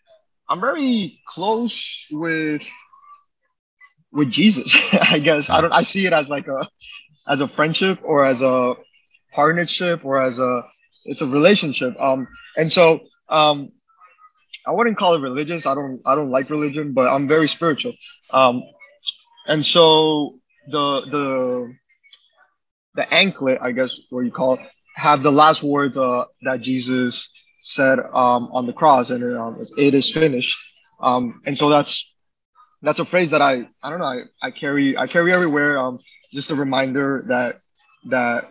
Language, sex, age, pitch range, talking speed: English, male, 20-39, 130-165 Hz, 160 wpm